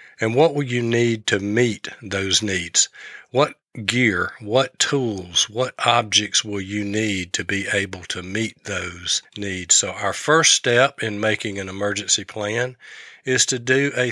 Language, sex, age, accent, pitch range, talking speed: English, male, 50-69, American, 100-120 Hz, 160 wpm